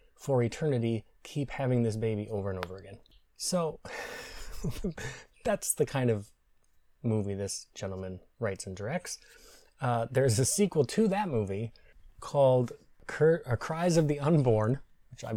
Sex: male